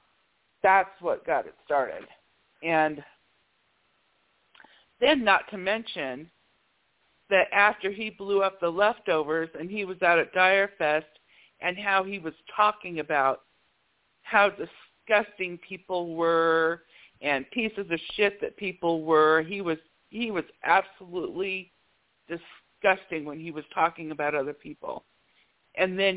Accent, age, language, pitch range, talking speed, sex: American, 50-69, English, 160-200 Hz, 130 wpm, female